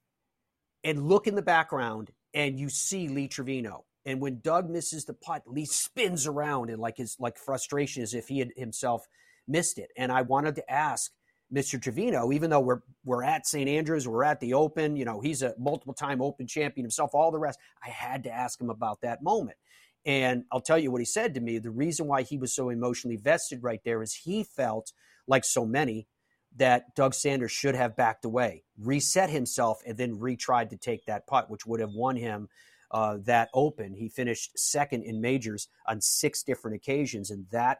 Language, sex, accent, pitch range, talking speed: English, male, American, 110-140 Hz, 205 wpm